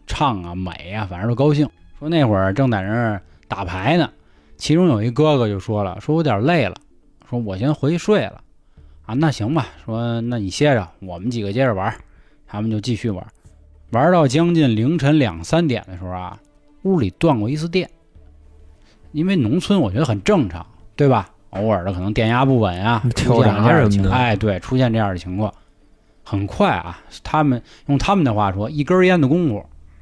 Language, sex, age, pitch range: Chinese, male, 20-39, 95-145 Hz